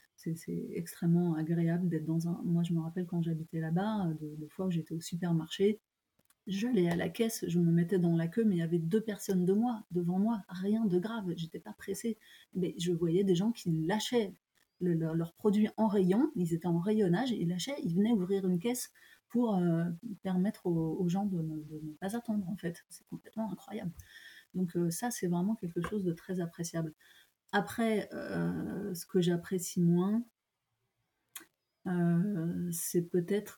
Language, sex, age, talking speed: French, female, 30-49, 195 wpm